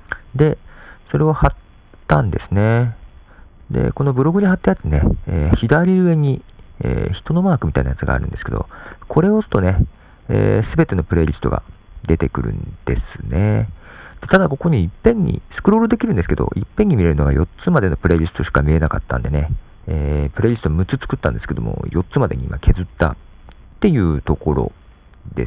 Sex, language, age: male, Japanese, 40-59